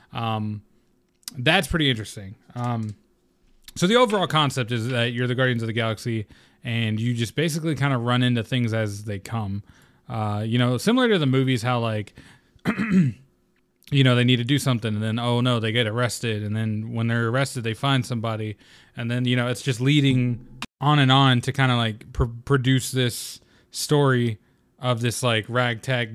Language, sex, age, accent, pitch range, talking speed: English, male, 20-39, American, 110-130 Hz, 185 wpm